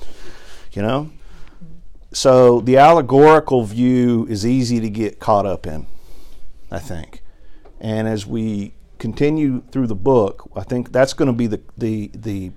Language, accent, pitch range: English, American, 95-120 Hz